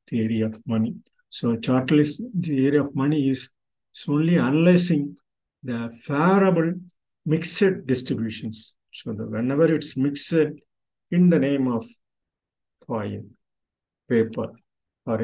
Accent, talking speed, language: native, 115 wpm, Tamil